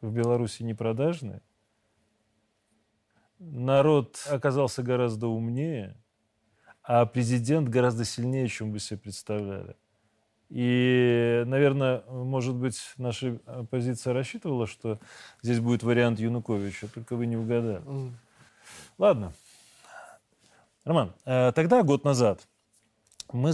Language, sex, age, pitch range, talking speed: Russian, male, 30-49, 110-145 Hz, 95 wpm